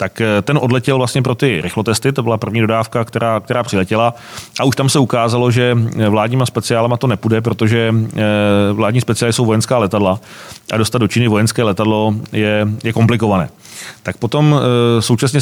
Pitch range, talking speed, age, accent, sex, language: 110-125 Hz, 165 wpm, 30-49, native, male, Czech